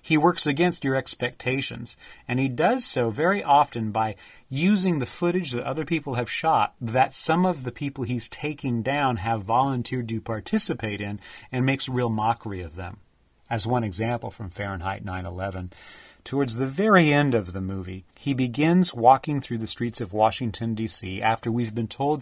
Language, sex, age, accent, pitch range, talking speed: English, male, 40-59, American, 110-145 Hz, 175 wpm